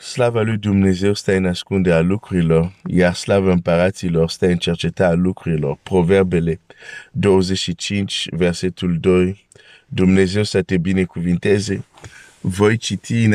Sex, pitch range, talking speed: male, 90-115 Hz, 120 wpm